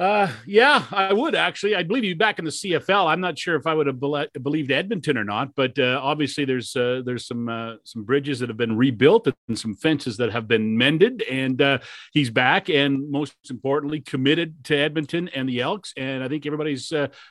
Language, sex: English, male